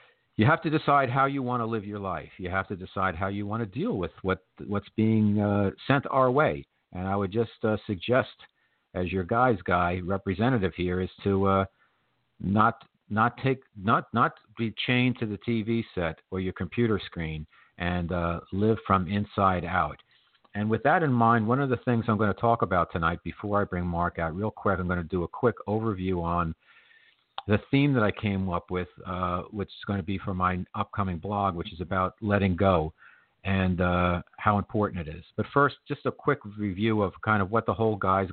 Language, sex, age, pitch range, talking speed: English, male, 50-69, 90-110 Hz, 210 wpm